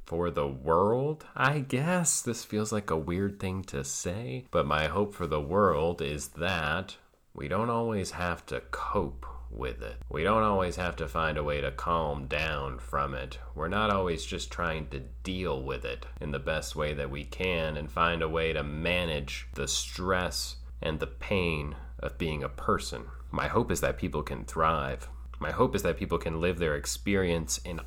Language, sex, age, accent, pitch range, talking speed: English, male, 30-49, American, 65-95 Hz, 195 wpm